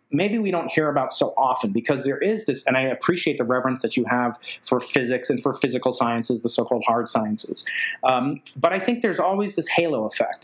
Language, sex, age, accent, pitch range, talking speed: English, male, 40-59, American, 120-140 Hz, 220 wpm